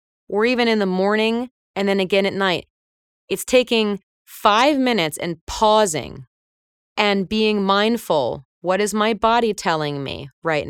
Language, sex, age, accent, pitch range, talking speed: English, female, 30-49, American, 170-225 Hz, 145 wpm